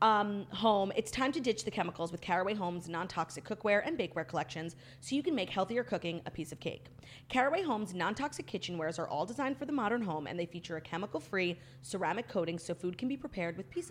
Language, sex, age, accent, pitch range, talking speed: English, female, 30-49, American, 170-220 Hz, 220 wpm